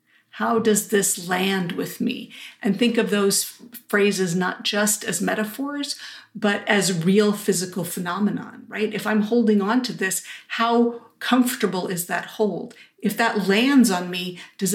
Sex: female